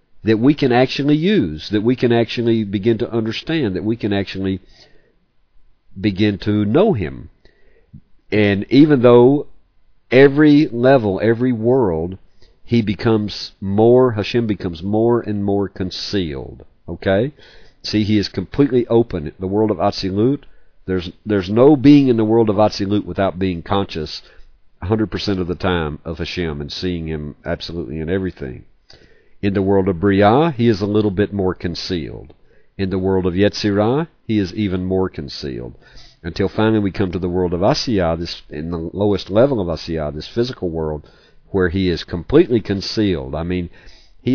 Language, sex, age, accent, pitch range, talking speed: English, male, 50-69, American, 90-115 Hz, 160 wpm